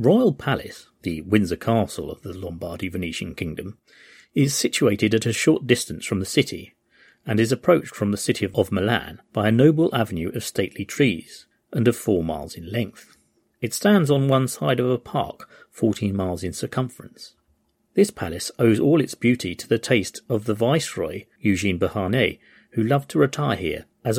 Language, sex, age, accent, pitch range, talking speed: English, male, 40-59, British, 100-120 Hz, 175 wpm